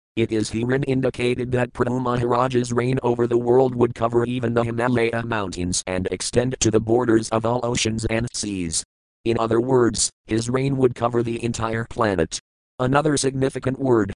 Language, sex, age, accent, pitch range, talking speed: English, male, 50-69, American, 100-120 Hz, 165 wpm